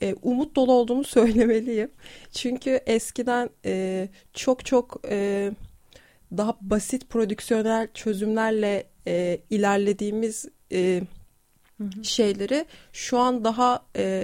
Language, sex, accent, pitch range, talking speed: Turkish, female, native, 195-245 Hz, 70 wpm